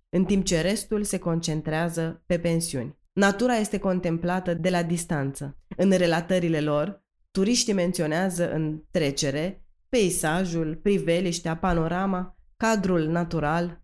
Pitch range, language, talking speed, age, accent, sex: 160-200 Hz, Romanian, 115 wpm, 20-39, native, female